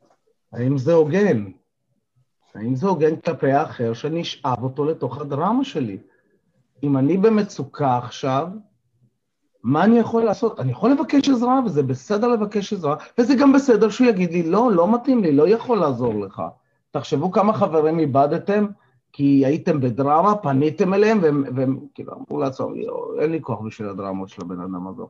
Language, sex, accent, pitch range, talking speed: Hebrew, male, native, 130-190 Hz, 160 wpm